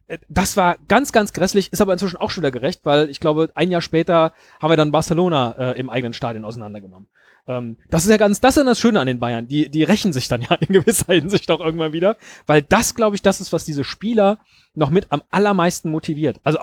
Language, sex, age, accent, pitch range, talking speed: German, male, 30-49, German, 145-195 Hz, 240 wpm